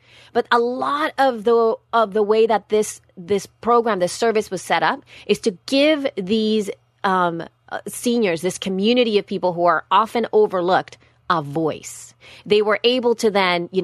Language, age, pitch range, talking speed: English, 30-49, 165-205 Hz, 170 wpm